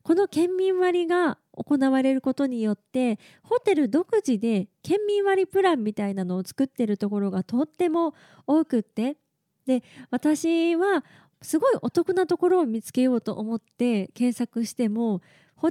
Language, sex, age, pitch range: Japanese, female, 20-39, 225-340 Hz